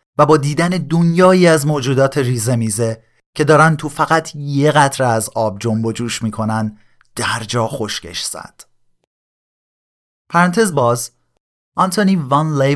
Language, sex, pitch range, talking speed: Persian, male, 110-150 Hz, 125 wpm